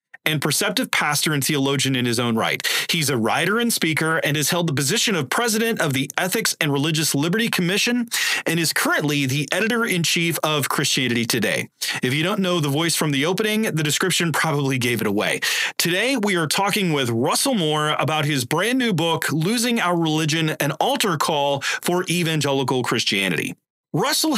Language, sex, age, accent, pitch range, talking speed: English, male, 30-49, American, 145-205 Hz, 180 wpm